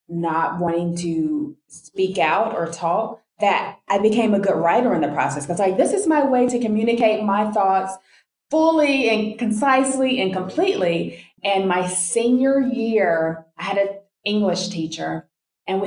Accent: American